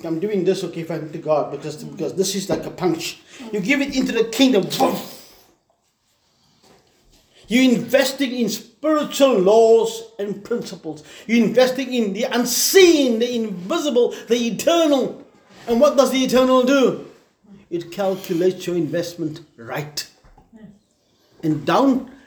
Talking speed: 130 wpm